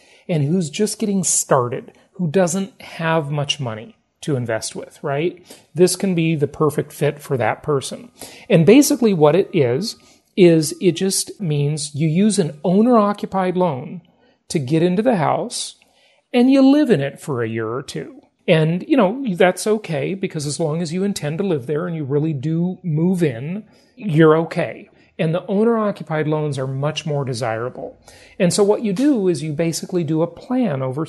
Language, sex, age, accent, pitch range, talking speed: English, male, 40-59, American, 150-200 Hz, 180 wpm